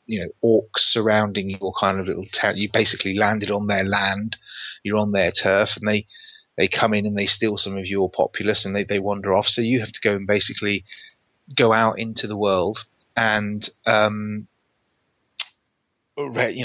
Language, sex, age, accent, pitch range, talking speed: English, male, 30-49, British, 100-115 Hz, 185 wpm